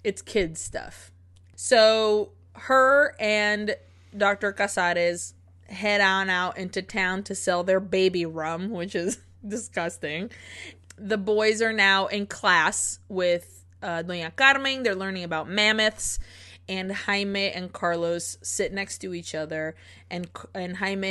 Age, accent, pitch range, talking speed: 20-39, American, 170-205 Hz, 135 wpm